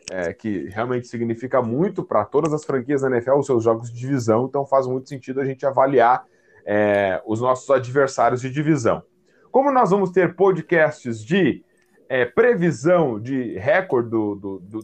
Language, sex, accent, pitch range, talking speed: Portuguese, male, Brazilian, 135-195 Hz, 155 wpm